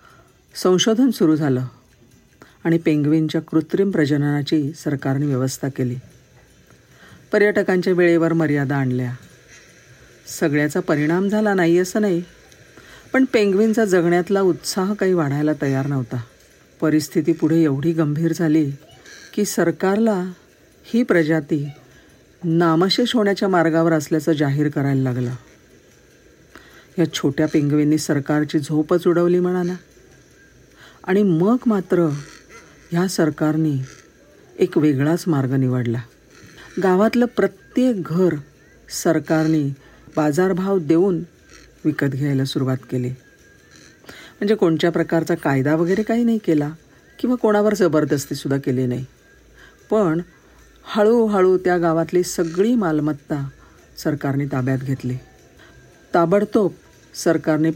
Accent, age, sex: native, 50-69, female